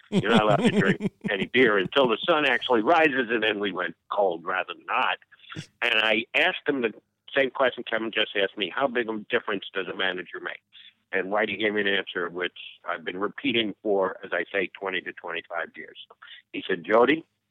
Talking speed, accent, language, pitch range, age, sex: 210 wpm, American, English, 110-155 Hz, 60-79, male